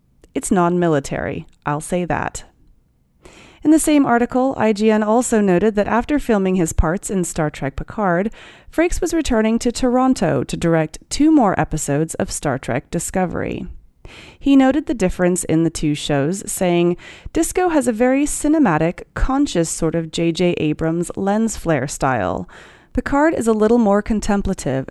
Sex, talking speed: female, 155 wpm